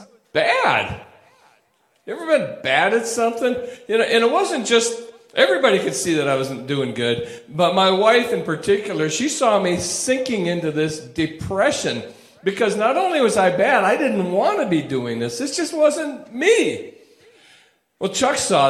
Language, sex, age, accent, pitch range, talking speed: English, male, 40-59, American, 125-195 Hz, 170 wpm